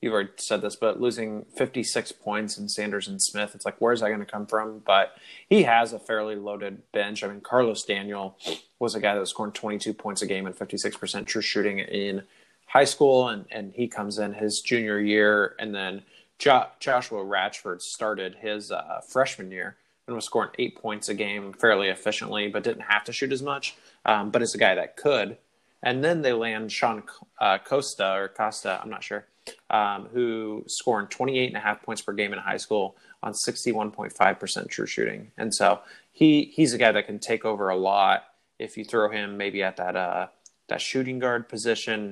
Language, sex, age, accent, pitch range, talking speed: English, male, 20-39, American, 100-115 Hz, 200 wpm